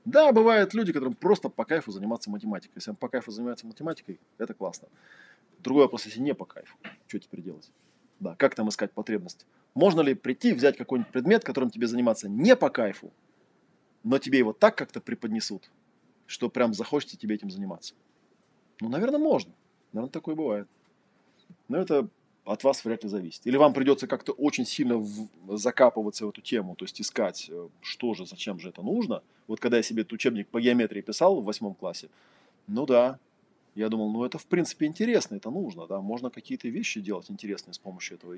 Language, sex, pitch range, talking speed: Russian, male, 110-155 Hz, 185 wpm